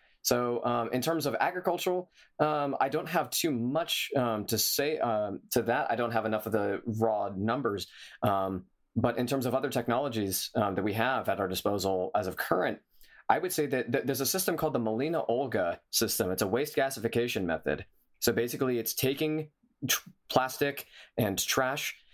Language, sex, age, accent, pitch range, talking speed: English, male, 20-39, American, 115-145 Hz, 180 wpm